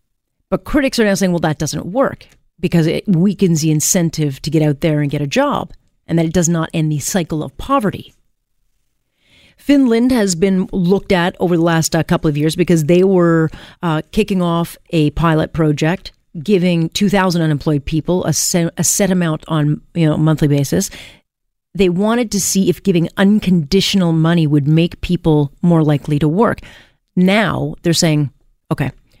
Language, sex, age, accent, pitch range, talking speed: English, female, 40-59, American, 155-200 Hz, 175 wpm